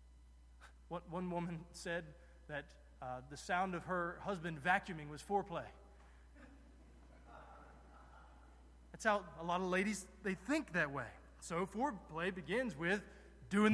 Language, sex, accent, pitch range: English, male, American, 130-215 Hz